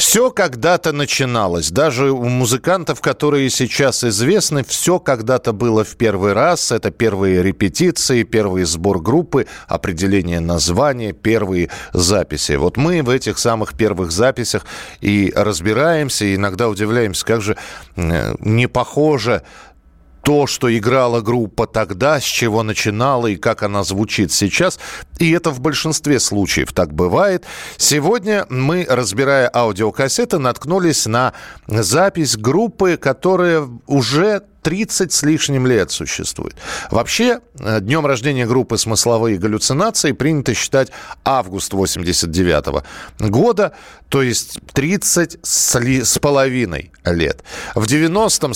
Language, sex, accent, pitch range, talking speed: Russian, male, native, 110-160 Hz, 115 wpm